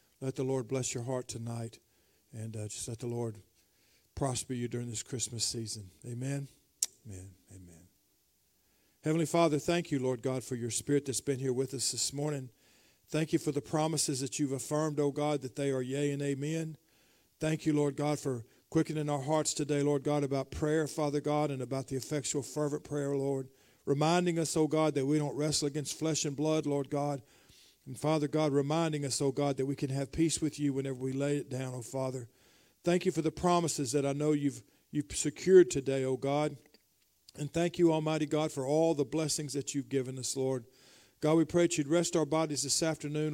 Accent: American